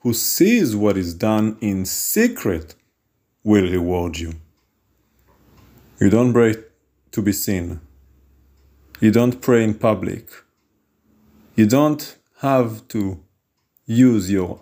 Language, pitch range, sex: English, 100-130 Hz, male